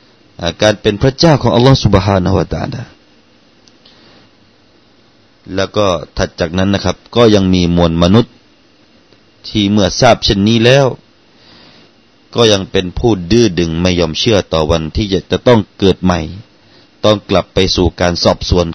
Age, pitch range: 30-49, 90-115 Hz